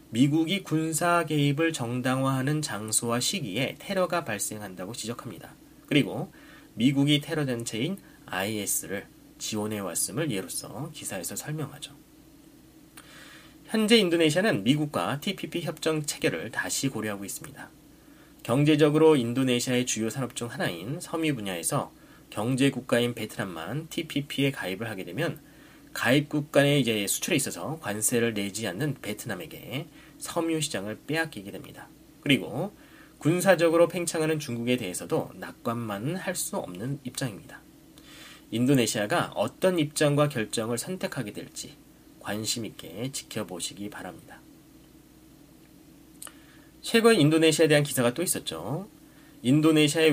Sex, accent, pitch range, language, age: male, native, 115-155 Hz, Korean, 30-49